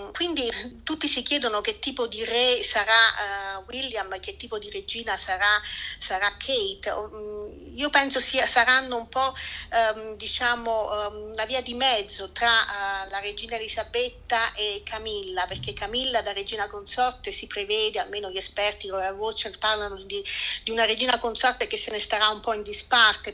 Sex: female